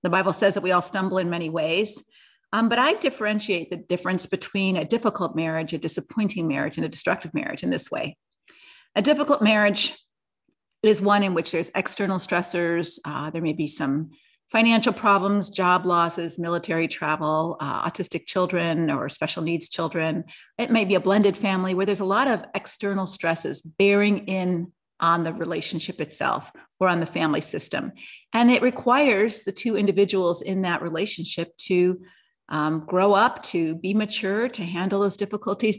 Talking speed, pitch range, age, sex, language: 170 wpm, 170-210 Hz, 50-69, female, English